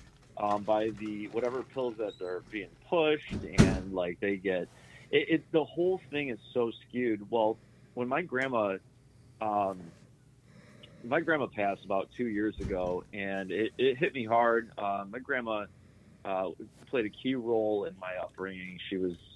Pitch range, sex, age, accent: 95-125 Hz, male, 30-49, American